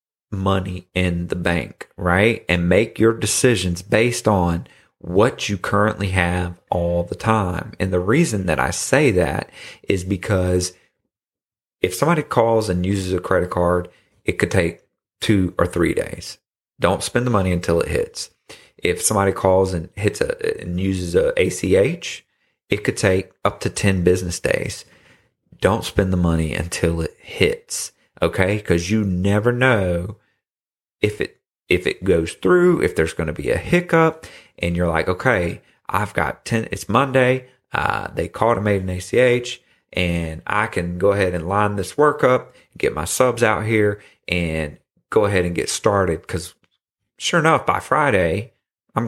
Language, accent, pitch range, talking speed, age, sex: English, American, 90-110 Hz, 165 wpm, 30-49, male